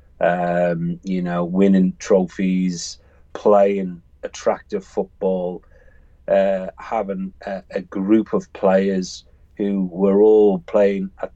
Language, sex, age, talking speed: English, male, 40-59, 105 wpm